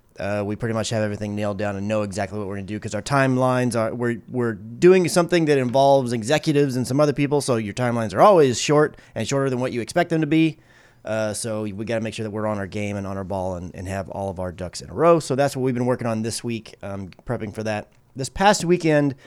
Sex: male